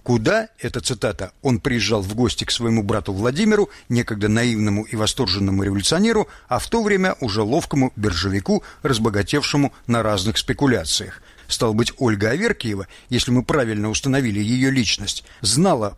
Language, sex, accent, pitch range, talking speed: Russian, male, native, 105-155 Hz, 145 wpm